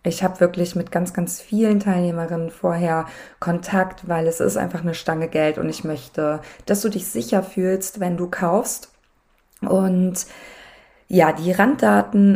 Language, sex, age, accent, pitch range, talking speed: German, female, 20-39, German, 165-200 Hz, 155 wpm